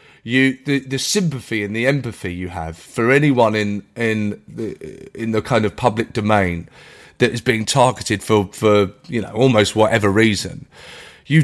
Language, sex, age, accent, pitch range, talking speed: English, male, 30-49, British, 115-180 Hz, 170 wpm